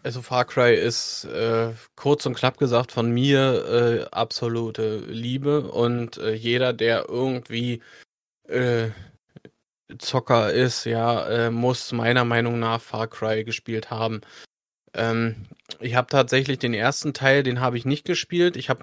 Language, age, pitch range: German, 20-39, 115-130 Hz